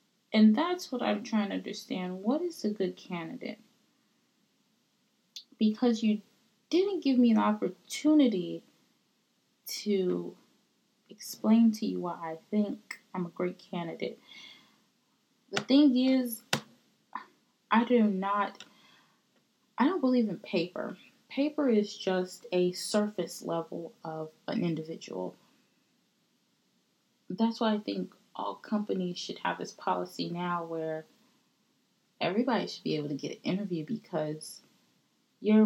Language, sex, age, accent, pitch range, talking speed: English, female, 20-39, American, 180-240 Hz, 120 wpm